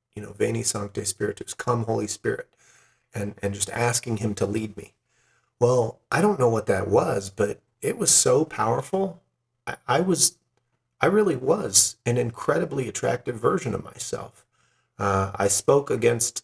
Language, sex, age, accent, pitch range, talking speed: English, male, 40-59, American, 100-125 Hz, 160 wpm